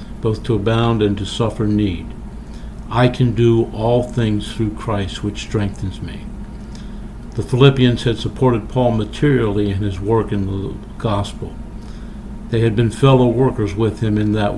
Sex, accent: male, American